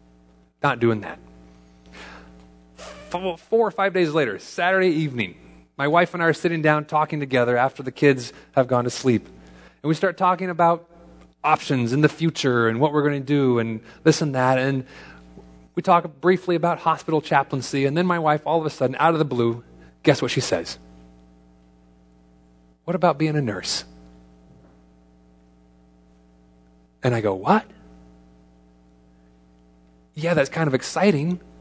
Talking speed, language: 155 wpm, English